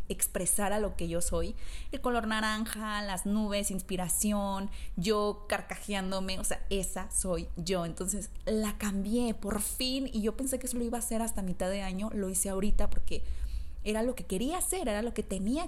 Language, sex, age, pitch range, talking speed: Spanish, female, 20-39, 185-220 Hz, 190 wpm